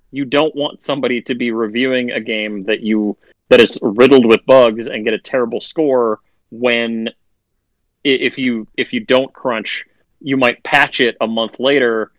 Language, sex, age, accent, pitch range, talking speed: English, male, 30-49, American, 110-135 Hz, 170 wpm